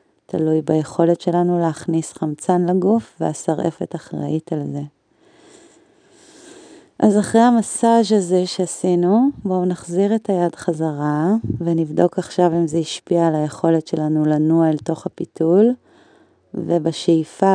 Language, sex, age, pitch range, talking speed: Hebrew, female, 30-49, 165-195 Hz, 115 wpm